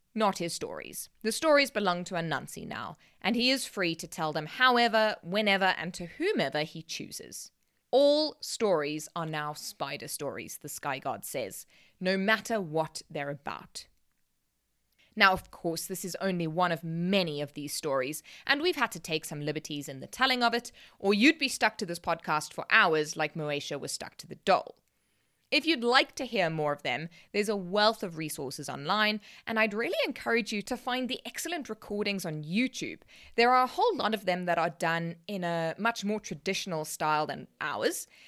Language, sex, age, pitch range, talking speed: English, female, 20-39, 165-235 Hz, 190 wpm